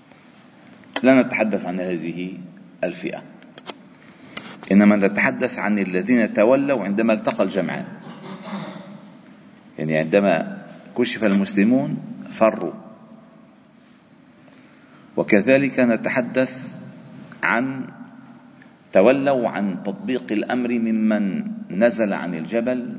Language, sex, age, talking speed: Arabic, male, 50-69, 75 wpm